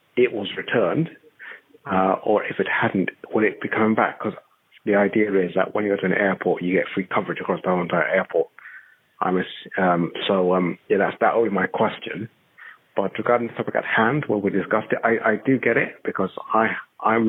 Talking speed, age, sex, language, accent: 210 wpm, 30-49, male, English, British